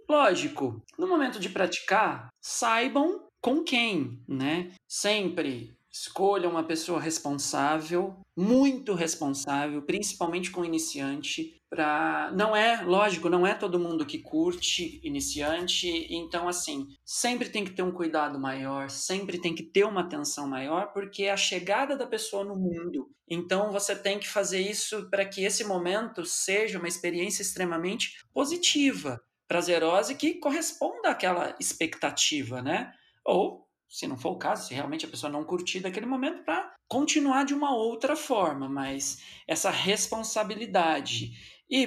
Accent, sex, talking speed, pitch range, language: Brazilian, male, 145 wpm, 165-245 Hz, Portuguese